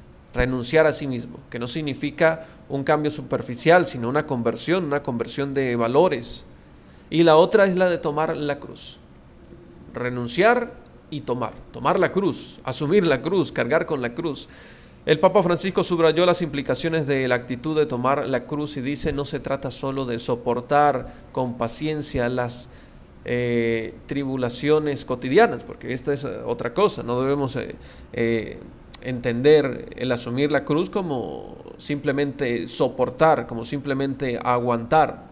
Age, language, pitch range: 40-59, Spanish, 125-155 Hz